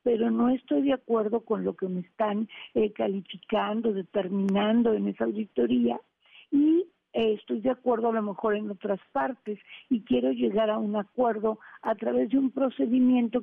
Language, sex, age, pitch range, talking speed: Spanish, female, 50-69, 210-250 Hz, 165 wpm